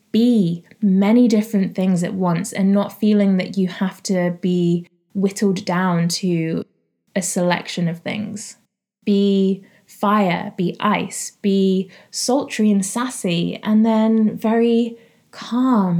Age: 20-39